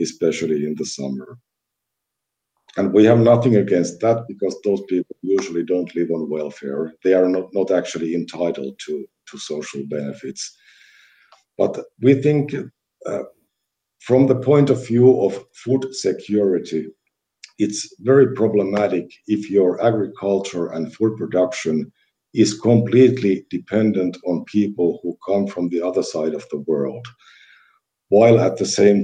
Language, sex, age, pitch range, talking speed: Finnish, male, 50-69, 85-115 Hz, 140 wpm